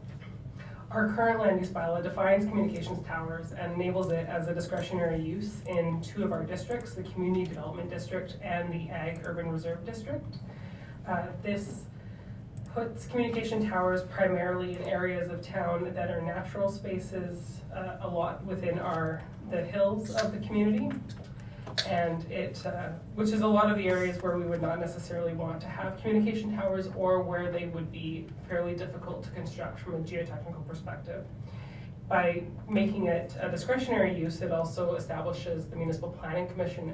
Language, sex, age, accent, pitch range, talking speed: English, female, 20-39, American, 165-190 Hz, 160 wpm